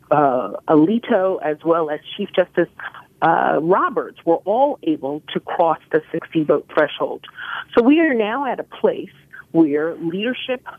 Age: 40-59